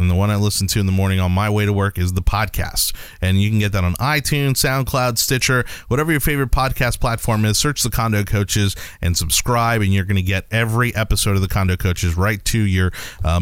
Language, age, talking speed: English, 30-49, 235 wpm